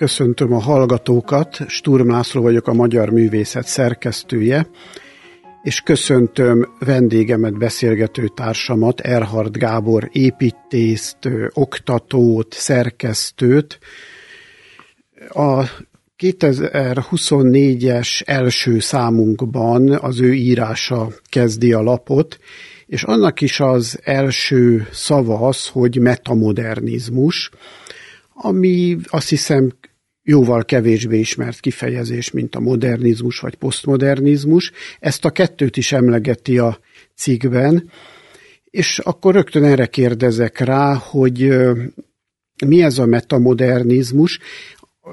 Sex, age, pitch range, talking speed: male, 50-69, 120-145 Hz, 90 wpm